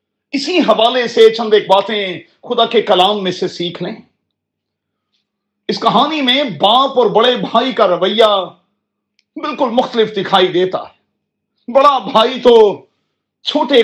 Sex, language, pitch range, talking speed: male, Urdu, 200-260 Hz, 130 wpm